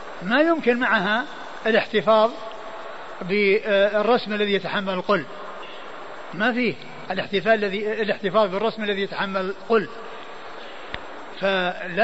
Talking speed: 80 wpm